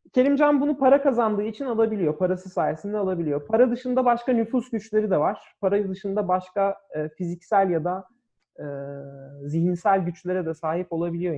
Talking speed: 155 wpm